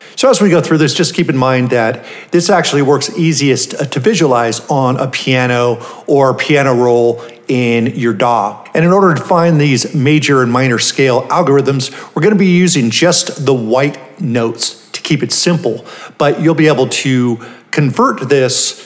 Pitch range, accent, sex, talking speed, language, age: 125-160 Hz, American, male, 180 wpm, English, 50-69